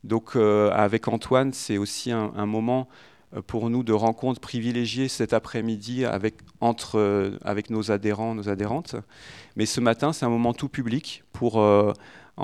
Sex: male